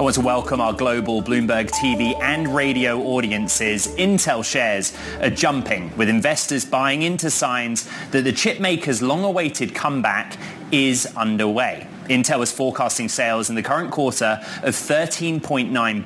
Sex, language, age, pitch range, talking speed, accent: male, English, 20-39, 115-170 Hz, 140 wpm, British